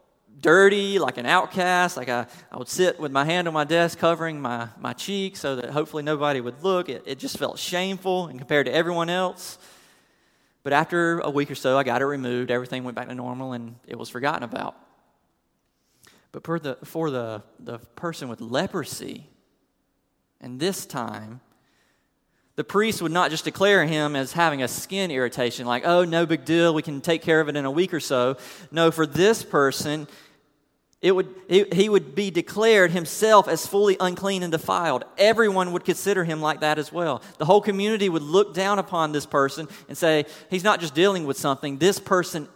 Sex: male